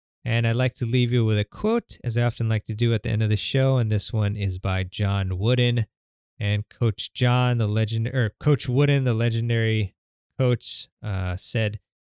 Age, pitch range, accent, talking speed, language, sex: 20-39, 105-120 Hz, American, 205 wpm, English, male